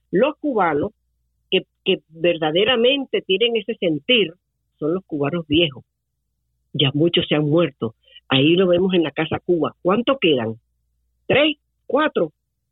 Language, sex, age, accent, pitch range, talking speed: Spanish, female, 50-69, American, 160-230 Hz, 130 wpm